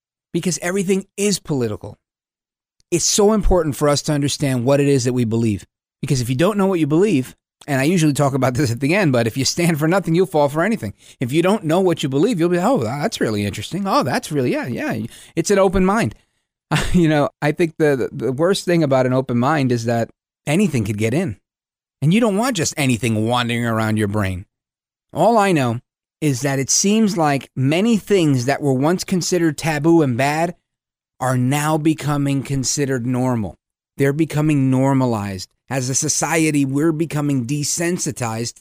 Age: 30-49